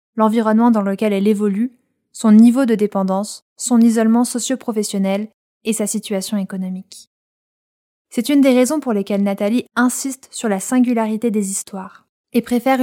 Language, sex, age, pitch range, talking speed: French, female, 20-39, 195-235 Hz, 145 wpm